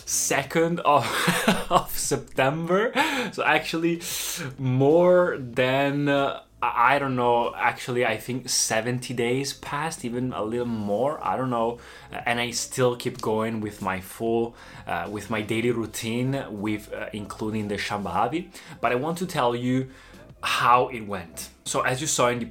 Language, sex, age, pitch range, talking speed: Italian, male, 20-39, 110-130 Hz, 155 wpm